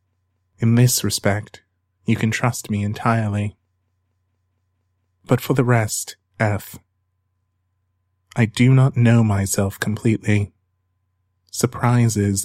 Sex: male